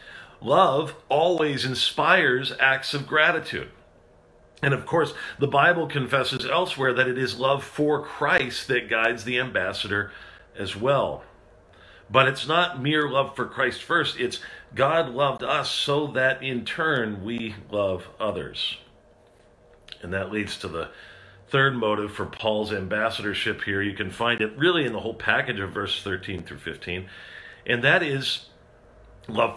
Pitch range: 110-150 Hz